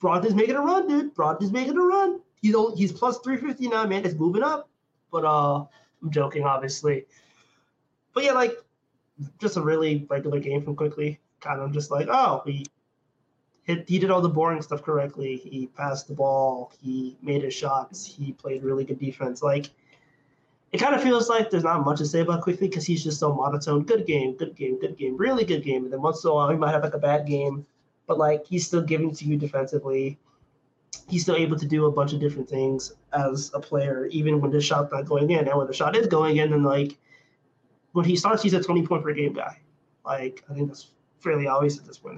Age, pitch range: 20-39, 140-180 Hz